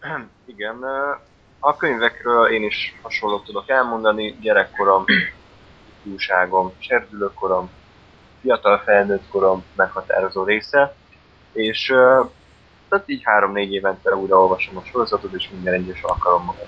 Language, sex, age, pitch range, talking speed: Hungarian, male, 20-39, 95-115 Hz, 100 wpm